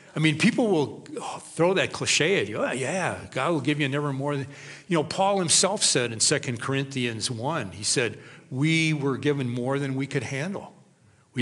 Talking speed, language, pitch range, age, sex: 200 wpm, English, 125-155 Hz, 50-69, male